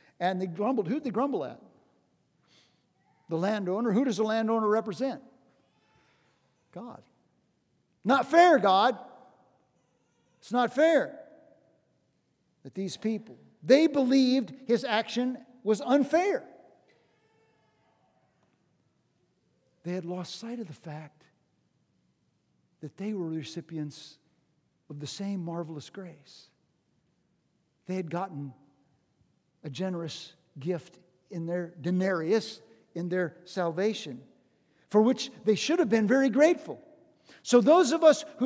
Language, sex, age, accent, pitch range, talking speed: English, male, 50-69, American, 170-255 Hz, 110 wpm